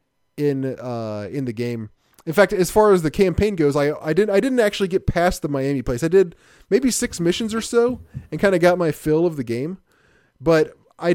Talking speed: 225 wpm